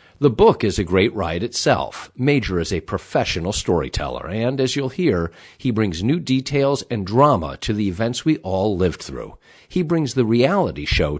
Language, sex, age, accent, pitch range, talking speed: English, male, 50-69, American, 105-145 Hz, 180 wpm